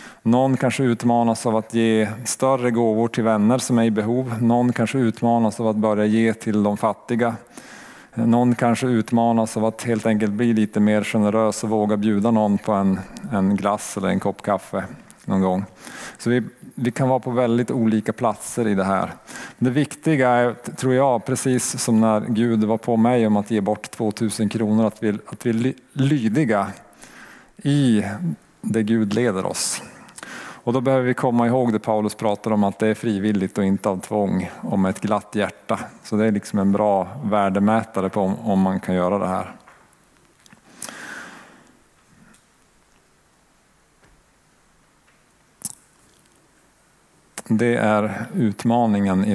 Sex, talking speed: male, 155 wpm